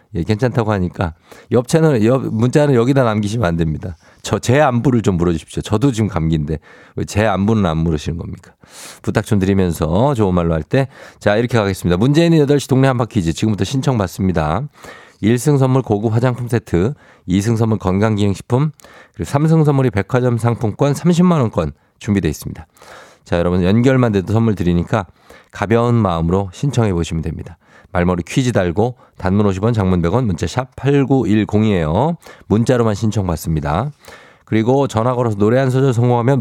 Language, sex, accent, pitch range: Korean, male, native, 90-125 Hz